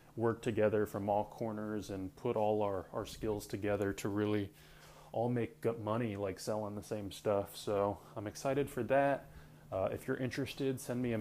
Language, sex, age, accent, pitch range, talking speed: English, male, 20-39, American, 105-125 Hz, 180 wpm